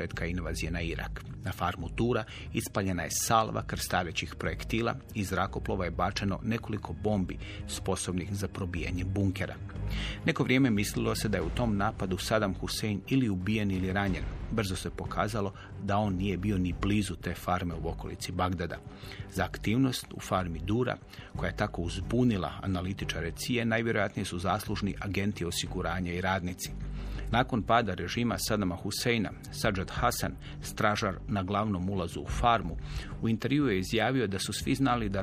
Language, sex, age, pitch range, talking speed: Croatian, male, 40-59, 90-110 Hz, 150 wpm